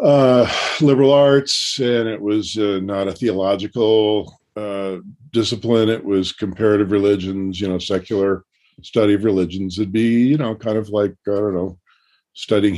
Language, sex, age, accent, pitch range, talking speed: English, male, 50-69, American, 95-110 Hz, 155 wpm